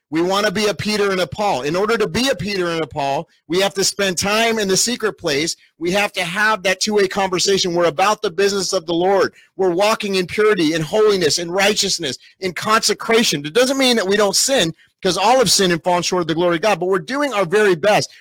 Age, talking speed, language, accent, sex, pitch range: 30-49, 250 wpm, English, American, male, 185-230 Hz